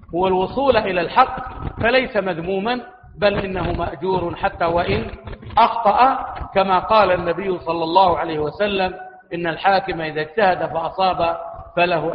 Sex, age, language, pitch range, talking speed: male, 50-69, Arabic, 165-195 Hz, 125 wpm